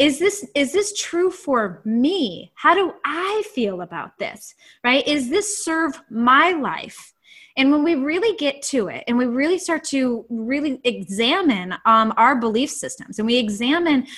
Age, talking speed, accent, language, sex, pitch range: 20-39, 170 wpm, American, English, female, 240-335 Hz